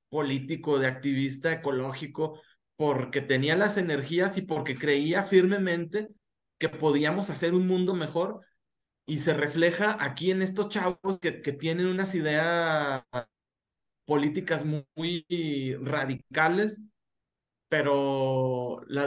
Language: Spanish